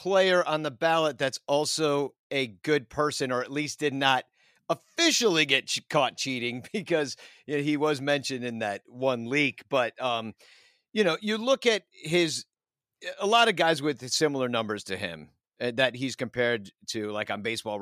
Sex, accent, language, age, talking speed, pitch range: male, American, English, 50-69, 180 wpm, 125-175 Hz